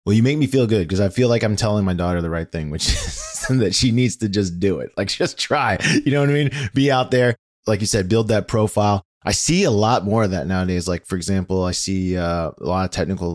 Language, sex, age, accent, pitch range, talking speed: English, male, 20-39, American, 85-110 Hz, 275 wpm